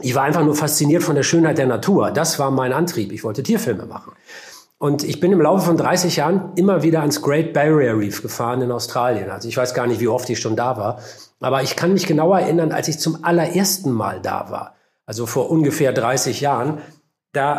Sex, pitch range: male, 130-170 Hz